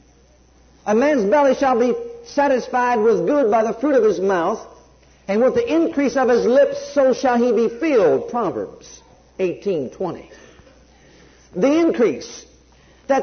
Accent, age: American, 50-69